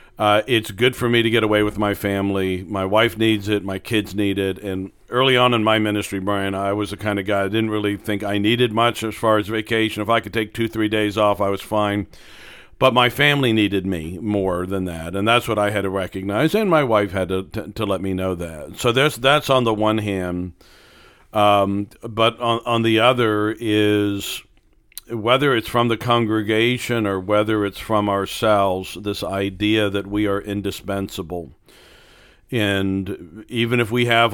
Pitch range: 100-115 Hz